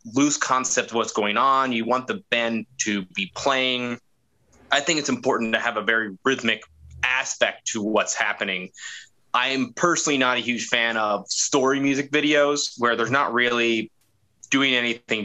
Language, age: English, 20-39